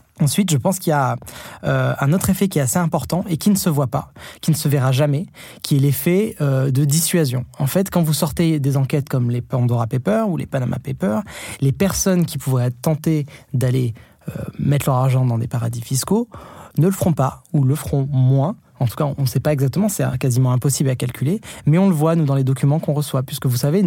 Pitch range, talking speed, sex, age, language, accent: 130-165 Hz, 235 wpm, male, 20-39, French, French